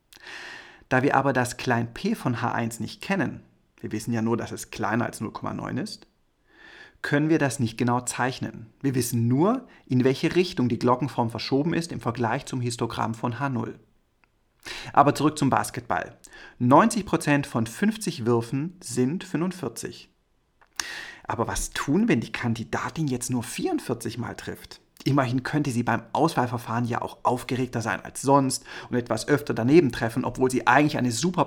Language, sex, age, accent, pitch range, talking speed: German, male, 40-59, German, 120-145 Hz, 160 wpm